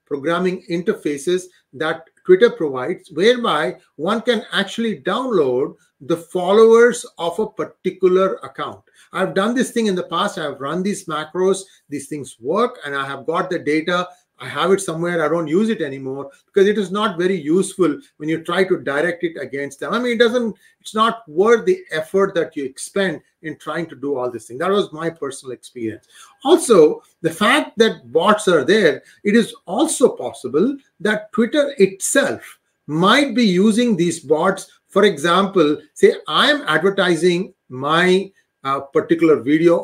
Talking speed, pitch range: 170 wpm, 165-225 Hz